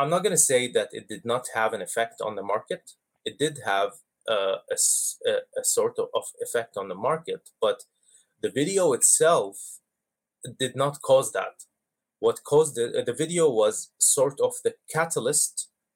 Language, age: English, 20-39